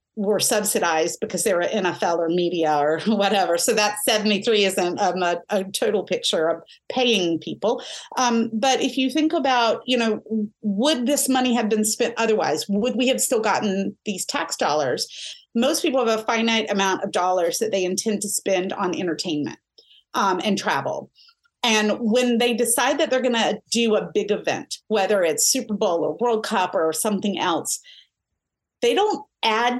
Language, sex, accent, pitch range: English, female, American, 205-255 Hz